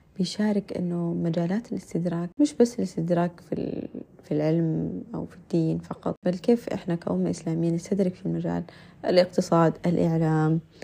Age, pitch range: 20-39, 165-185 Hz